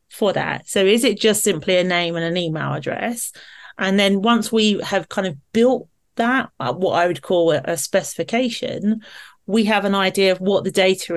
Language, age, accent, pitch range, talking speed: English, 40-59, British, 175-225 Hz, 200 wpm